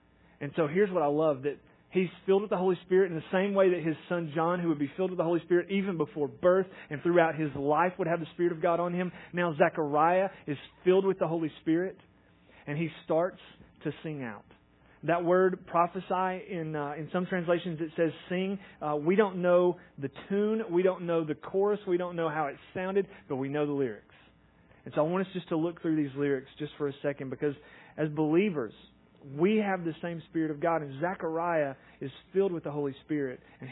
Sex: male